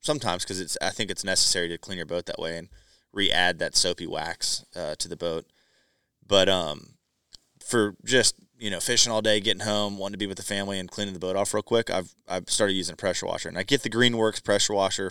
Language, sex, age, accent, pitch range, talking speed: English, male, 20-39, American, 95-115 Hz, 240 wpm